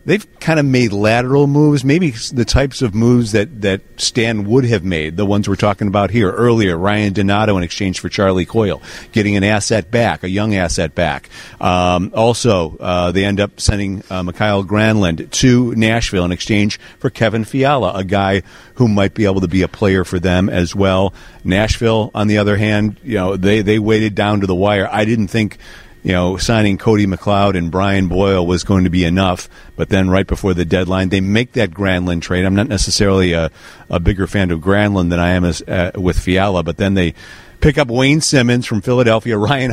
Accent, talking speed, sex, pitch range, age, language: American, 205 wpm, male, 95-110 Hz, 50-69, English